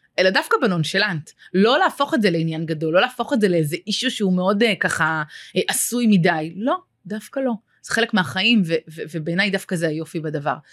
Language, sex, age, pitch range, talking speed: Hebrew, female, 30-49, 160-205 Hz, 185 wpm